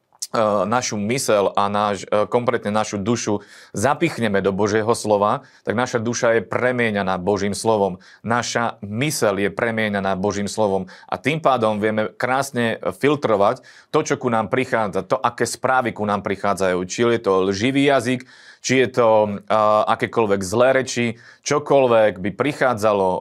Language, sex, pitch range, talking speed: Slovak, male, 100-120 Hz, 140 wpm